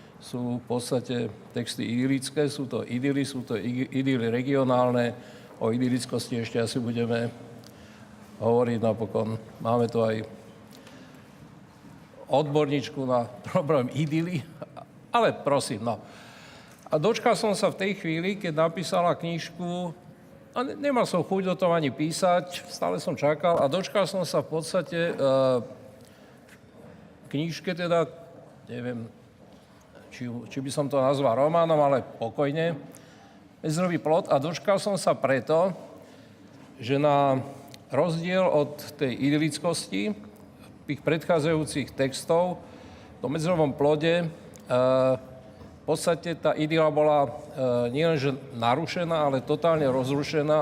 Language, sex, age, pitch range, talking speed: Slovak, male, 50-69, 125-165 Hz, 120 wpm